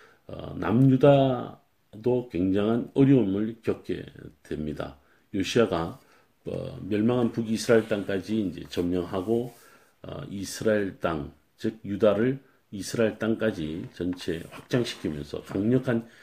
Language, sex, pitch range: Korean, male, 90-130 Hz